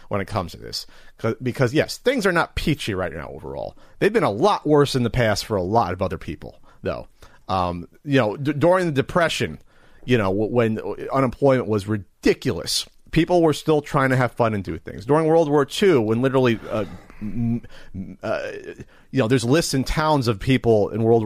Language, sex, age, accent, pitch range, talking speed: English, male, 40-59, American, 100-150 Hz, 200 wpm